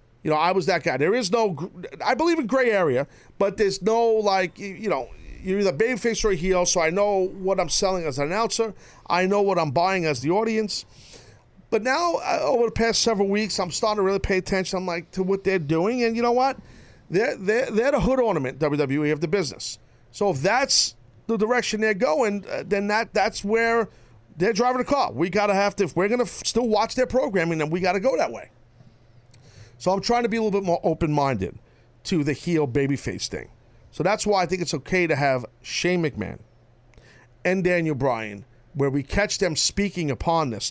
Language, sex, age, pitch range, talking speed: English, male, 40-59, 135-200 Hz, 215 wpm